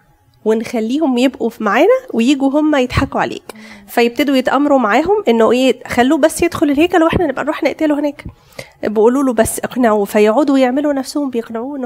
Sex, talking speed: female, 150 wpm